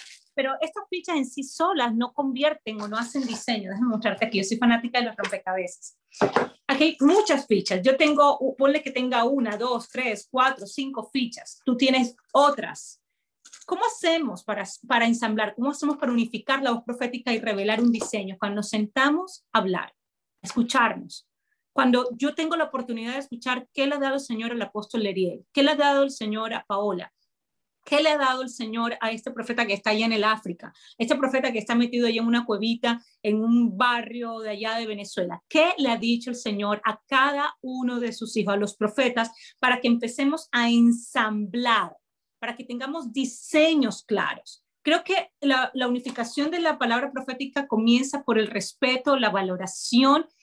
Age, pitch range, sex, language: 30-49, 225-275 Hz, female, Spanish